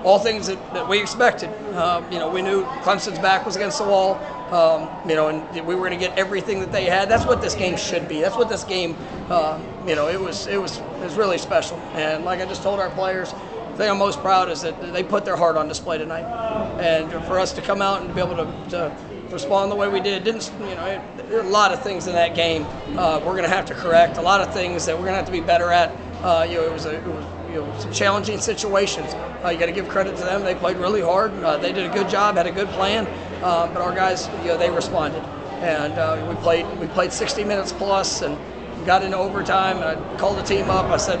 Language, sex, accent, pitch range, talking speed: English, male, American, 175-205 Hz, 275 wpm